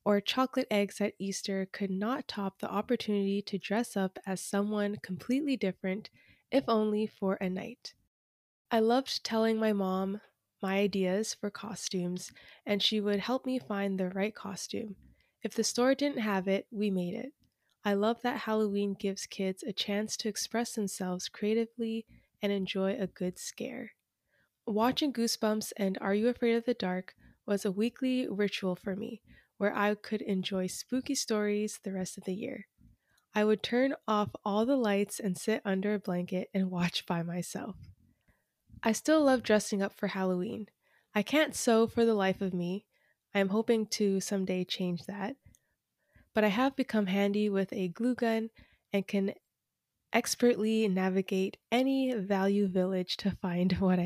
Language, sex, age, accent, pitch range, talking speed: English, female, 20-39, American, 195-225 Hz, 165 wpm